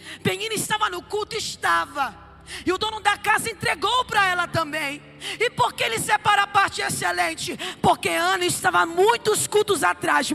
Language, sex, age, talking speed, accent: Portuguese, female, 20-39, 160 wpm, Brazilian